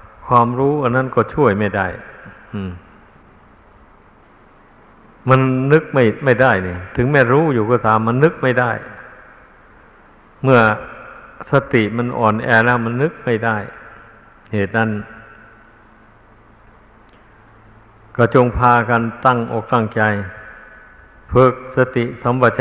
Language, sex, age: Thai, male, 60-79